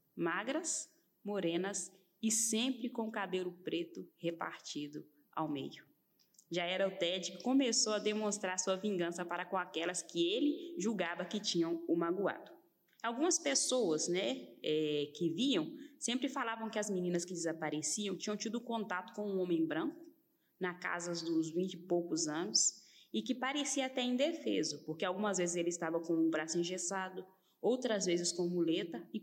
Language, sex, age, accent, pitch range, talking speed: Portuguese, female, 20-39, Brazilian, 175-235 Hz, 155 wpm